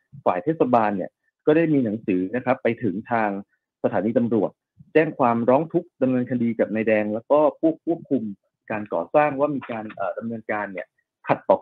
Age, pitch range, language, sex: 20-39, 110-145 Hz, Thai, male